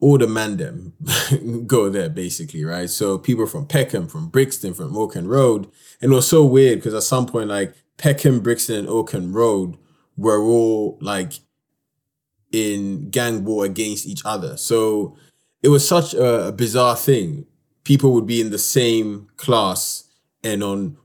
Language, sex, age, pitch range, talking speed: English, male, 20-39, 105-145 Hz, 160 wpm